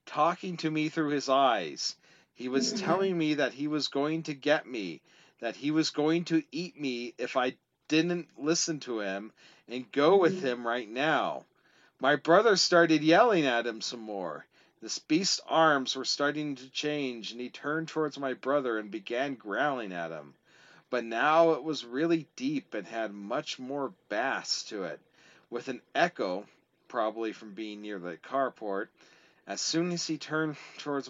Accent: American